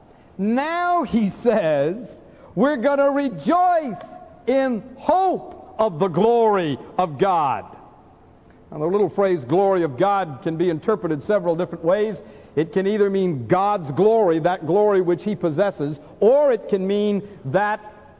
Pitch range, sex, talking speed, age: 175-255 Hz, male, 140 wpm, 60-79